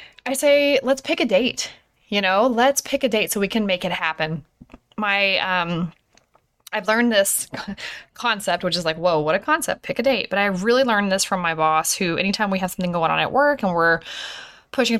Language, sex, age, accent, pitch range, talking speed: English, female, 20-39, American, 185-275 Hz, 215 wpm